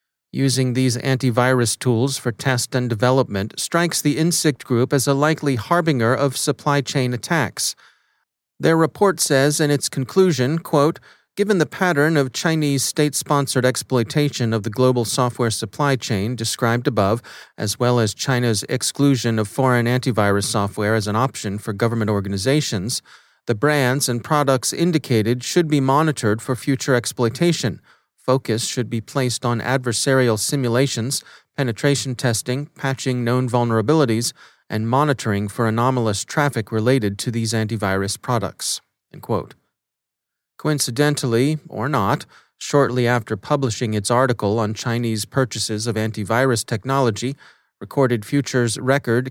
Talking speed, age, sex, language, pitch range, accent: 130 wpm, 40-59, male, English, 115-140 Hz, American